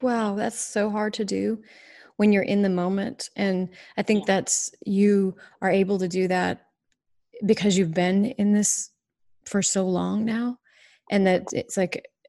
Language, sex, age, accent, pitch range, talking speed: English, female, 30-49, American, 185-220 Hz, 165 wpm